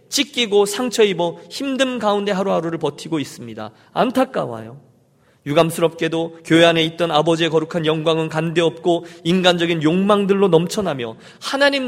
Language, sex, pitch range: Korean, male, 150-220 Hz